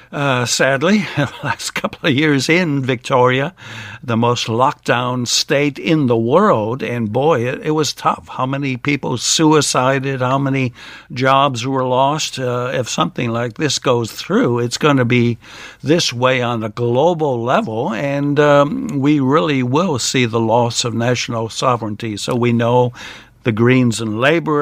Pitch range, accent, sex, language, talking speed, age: 120-150 Hz, American, male, English, 160 wpm, 60-79